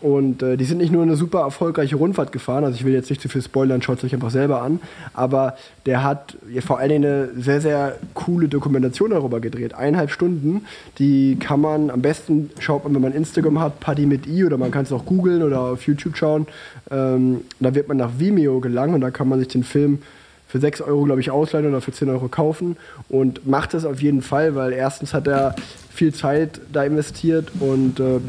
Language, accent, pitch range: German, German, 135-155 Hz